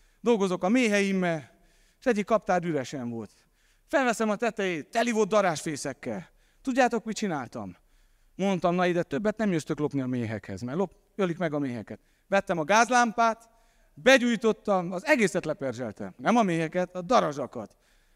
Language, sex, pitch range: Hungarian, male, 175-230 Hz